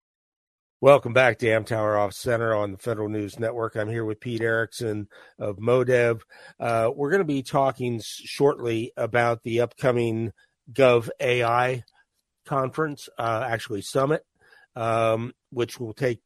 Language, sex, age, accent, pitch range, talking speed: English, male, 50-69, American, 110-135 Hz, 145 wpm